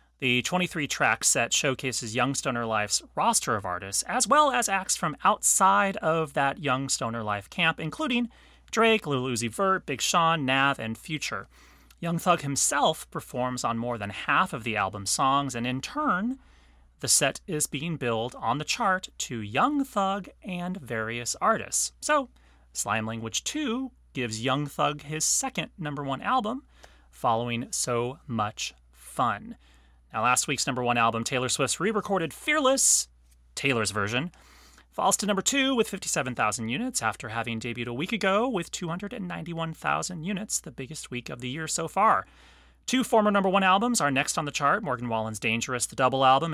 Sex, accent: male, American